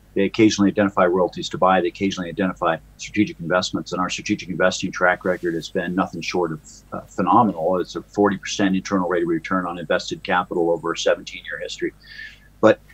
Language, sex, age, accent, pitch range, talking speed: English, male, 50-69, American, 90-105 Hz, 180 wpm